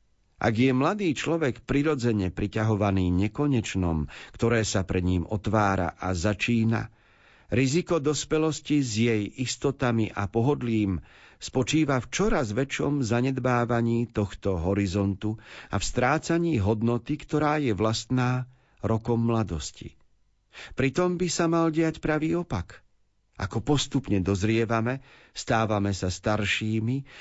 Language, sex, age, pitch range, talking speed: Slovak, male, 50-69, 100-135 Hz, 110 wpm